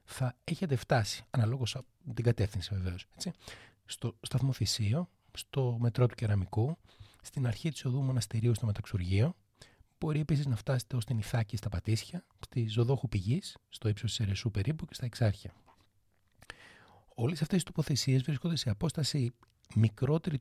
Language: Greek